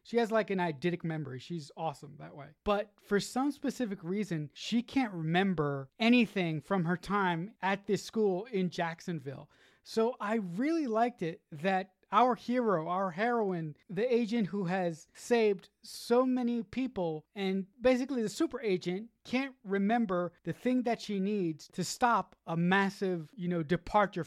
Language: English